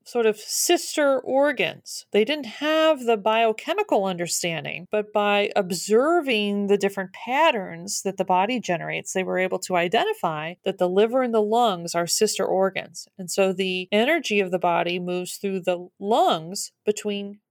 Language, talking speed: English, 160 wpm